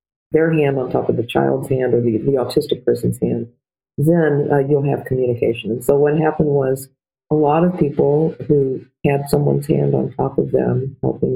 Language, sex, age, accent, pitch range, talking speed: English, female, 50-69, American, 135-170 Hz, 195 wpm